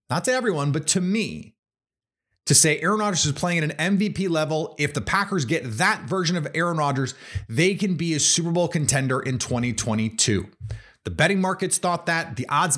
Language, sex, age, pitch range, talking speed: English, male, 30-49, 115-175 Hz, 195 wpm